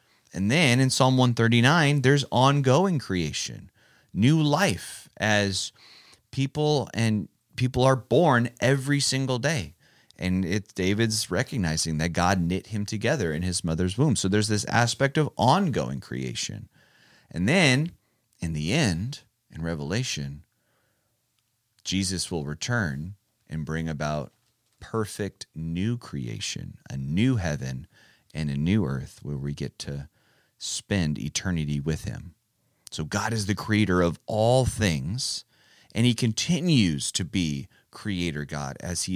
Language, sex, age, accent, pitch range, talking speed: English, male, 30-49, American, 85-125 Hz, 135 wpm